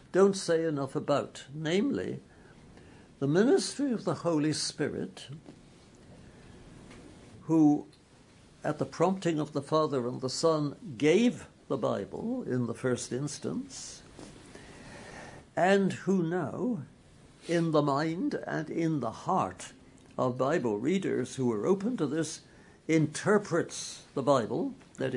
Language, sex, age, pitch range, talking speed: English, male, 60-79, 125-170 Hz, 120 wpm